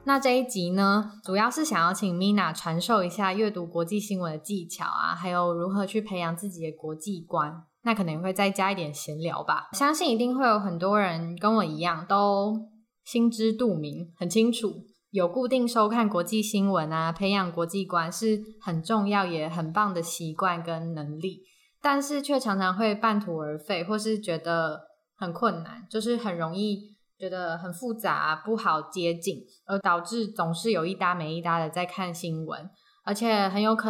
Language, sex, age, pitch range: Chinese, female, 10-29, 170-215 Hz